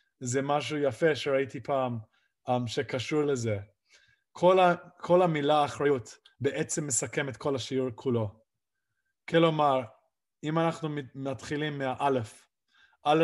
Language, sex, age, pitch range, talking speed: Hebrew, male, 20-39, 130-145 Hz, 105 wpm